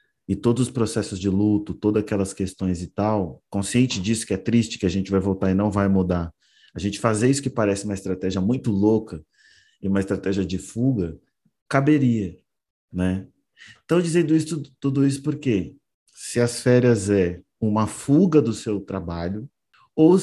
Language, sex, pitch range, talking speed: Portuguese, male, 100-150 Hz, 170 wpm